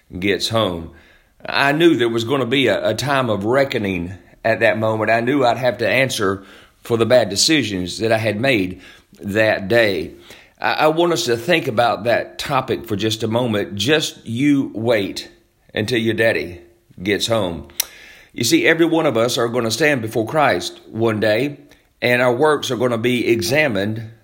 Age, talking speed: 40-59, 190 wpm